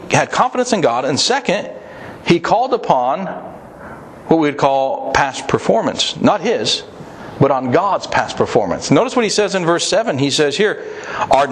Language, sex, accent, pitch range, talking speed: English, male, American, 140-230 Hz, 170 wpm